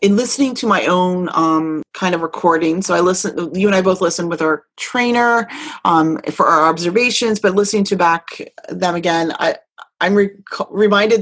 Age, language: 30-49, English